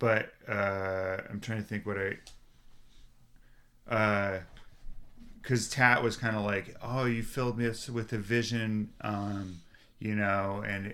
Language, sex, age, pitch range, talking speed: English, male, 30-49, 100-115 Hz, 145 wpm